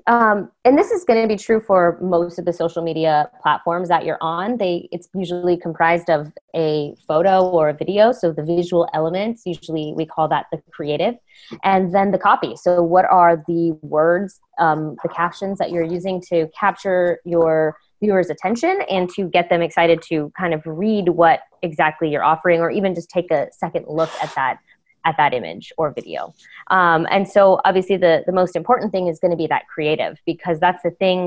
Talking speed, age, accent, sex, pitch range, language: 200 wpm, 20-39, American, female, 160-190 Hz, English